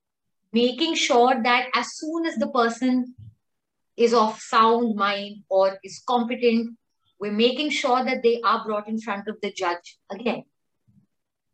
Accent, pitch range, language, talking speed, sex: Indian, 205-260 Hz, English, 145 wpm, female